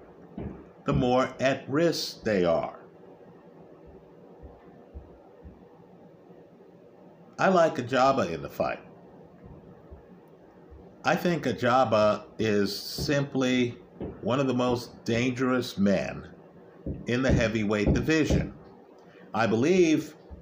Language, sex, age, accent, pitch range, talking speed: English, male, 50-69, American, 125-150 Hz, 85 wpm